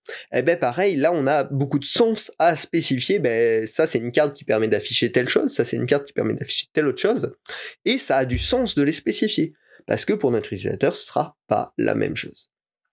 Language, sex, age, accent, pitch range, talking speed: French, male, 20-39, French, 130-185 Hz, 235 wpm